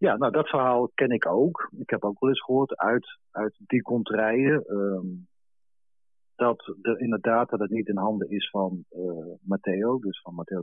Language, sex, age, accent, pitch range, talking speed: Dutch, male, 40-59, Dutch, 100-125 Hz, 185 wpm